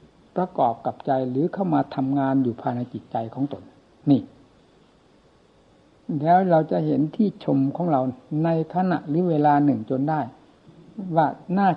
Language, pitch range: Thai, 135-170 Hz